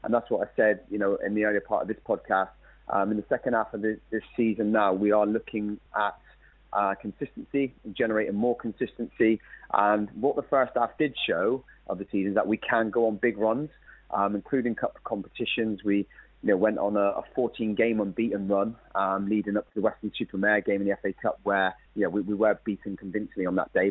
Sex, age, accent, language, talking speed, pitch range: male, 30-49, British, English, 220 wpm, 100-115 Hz